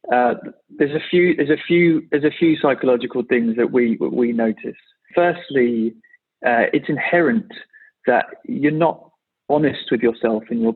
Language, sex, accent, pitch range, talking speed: English, male, British, 115-150 Hz, 155 wpm